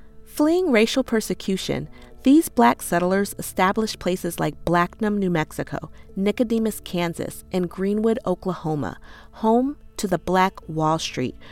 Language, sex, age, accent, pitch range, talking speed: English, female, 40-59, American, 170-225 Hz, 120 wpm